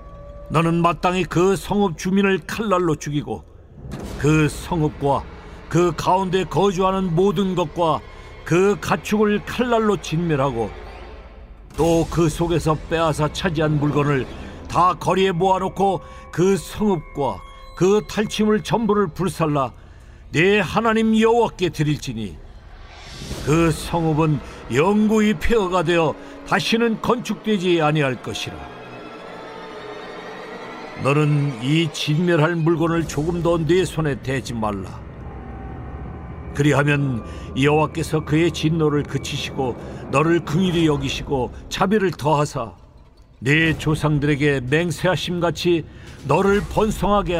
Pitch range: 140-185 Hz